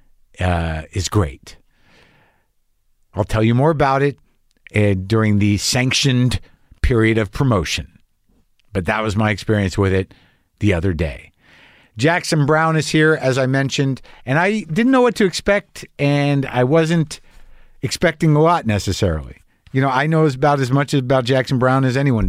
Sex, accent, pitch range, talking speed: male, American, 105-145 Hz, 160 wpm